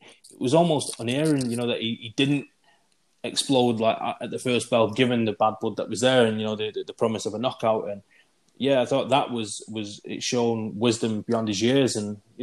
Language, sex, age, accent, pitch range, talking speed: English, male, 20-39, British, 110-125 Hz, 230 wpm